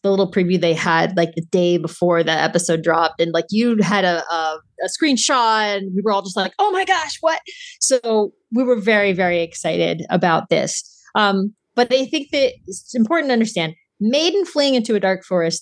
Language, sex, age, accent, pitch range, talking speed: English, female, 30-49, American, 175-250 Hz, 200 wpm